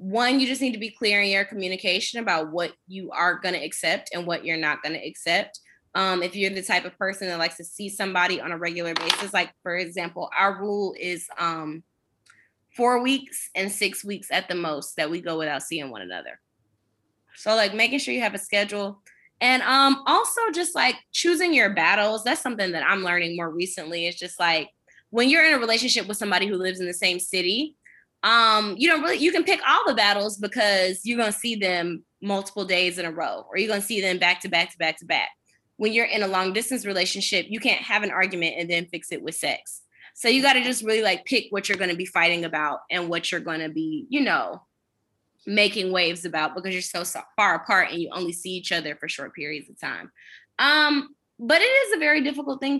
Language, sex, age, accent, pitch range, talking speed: English, female, 20-39, American, 175-240 Hz, 225 wpm